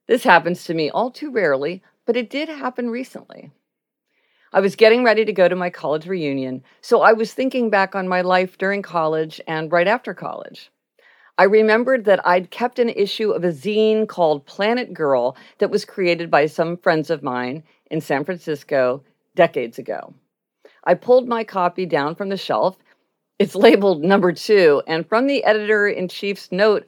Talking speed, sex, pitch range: 175 wpm, female, 160-220 Hz